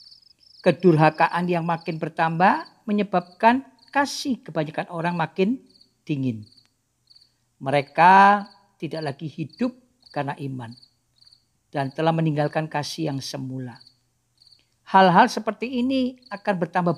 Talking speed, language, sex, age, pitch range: 95 wpm, Indonesian, female, 50-69, 130-185 Hz